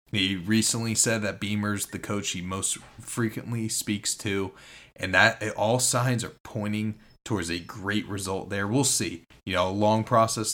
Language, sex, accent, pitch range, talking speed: English, male, American, 100-120 Hz, 170 wpm